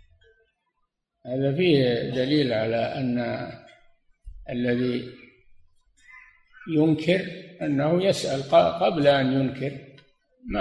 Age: 60-79